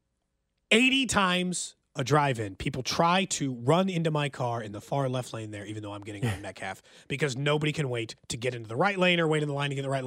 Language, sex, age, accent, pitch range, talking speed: English, male, 30-49, American, 135-230 Hz, 255 wpm